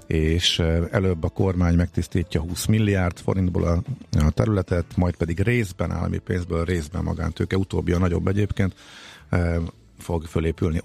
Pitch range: 85-105 Hz